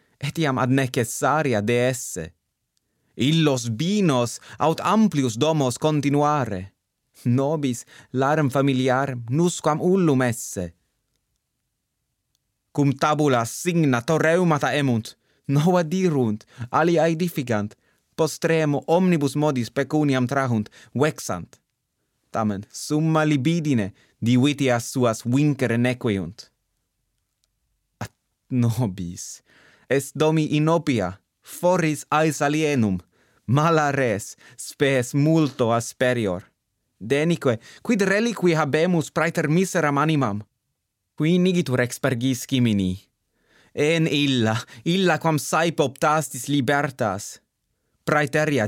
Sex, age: male, 30-49